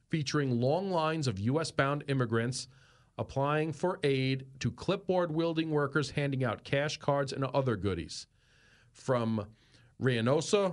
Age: 40-59